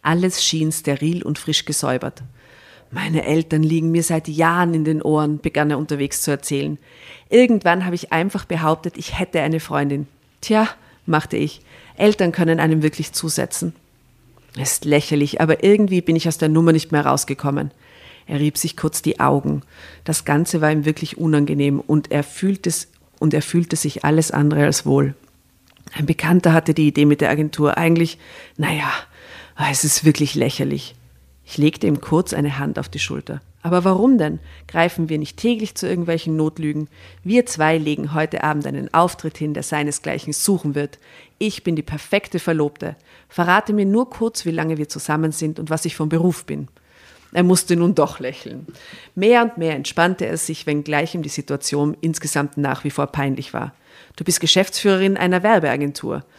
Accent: German